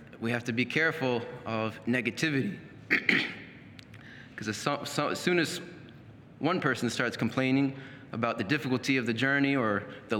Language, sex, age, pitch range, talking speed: English, male, 30-49, 115-135 Hz, 135 wpm